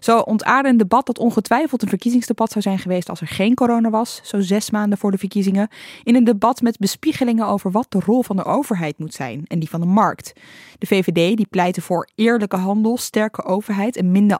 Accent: Dutch